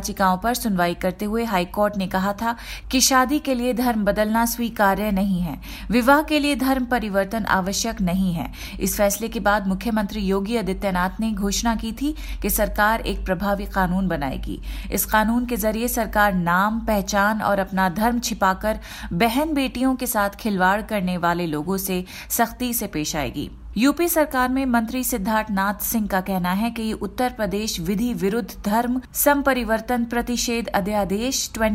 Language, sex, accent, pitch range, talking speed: Hindi, female, native, 195-240 Hz, 165 wpm